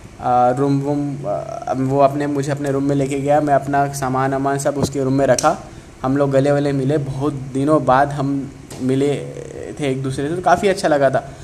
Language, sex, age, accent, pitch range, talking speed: English, male, 20-39, Indian, 135-160 Hz, 155 wpm